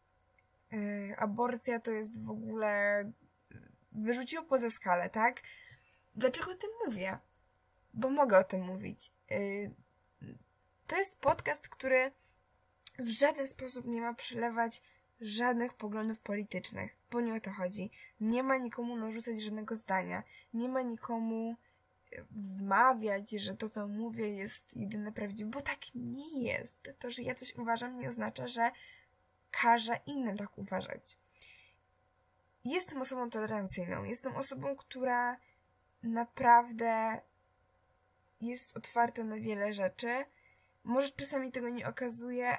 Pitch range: 195-250 Hz